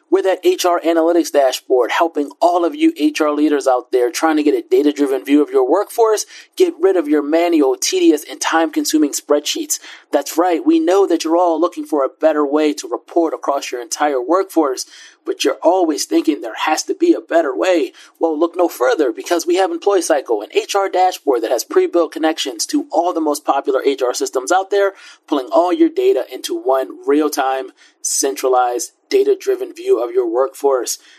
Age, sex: 30-49, male